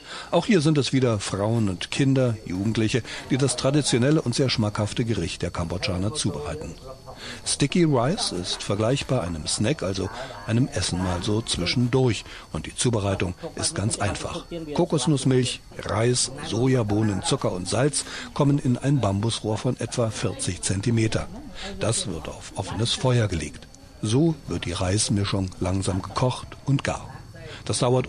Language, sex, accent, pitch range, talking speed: German, male, German, 100-130 Hz, 145 wpm